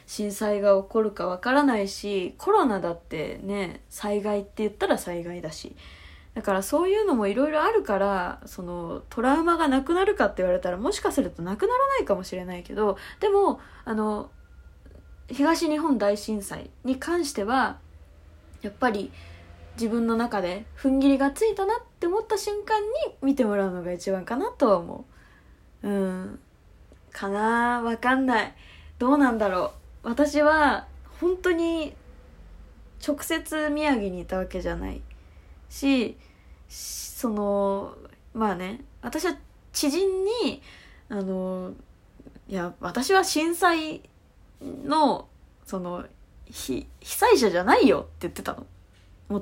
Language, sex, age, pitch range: Japanese, female, 20-39, 185-300 Hz